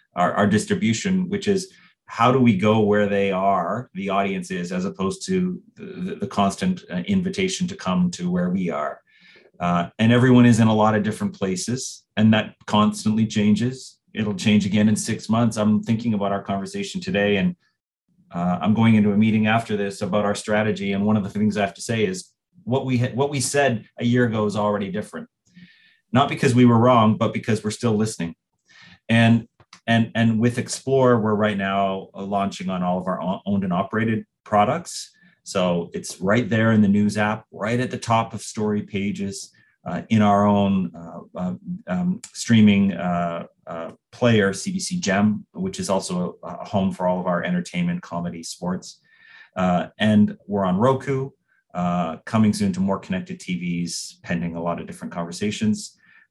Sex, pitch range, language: male, 100-140 Hz, English